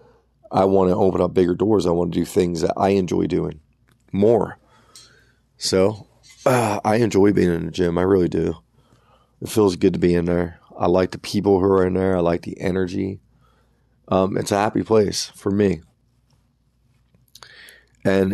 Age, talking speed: 30-49, 180 wpm